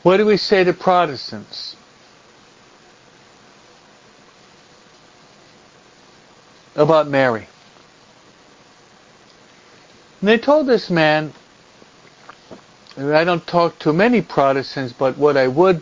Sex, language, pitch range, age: male, English, 135-175 Hz, 60-79